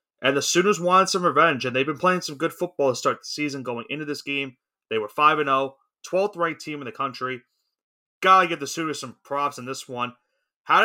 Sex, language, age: male, English, 30-49